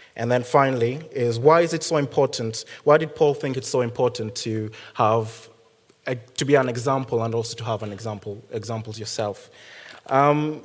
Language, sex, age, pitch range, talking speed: English, male, 20-39, 115-135 Hz, 180 wpm